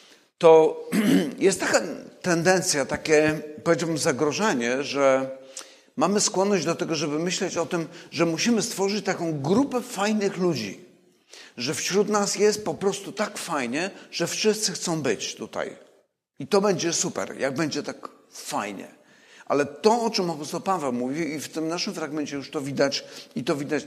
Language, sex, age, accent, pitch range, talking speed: Polish, male, 50-69, native, 135-190 Hz, 155 wpm